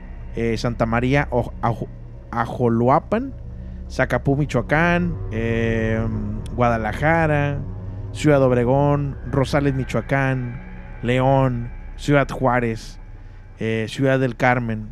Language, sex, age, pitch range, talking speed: Spanish, male, 20-39, 105-135 Hz, 75 wpm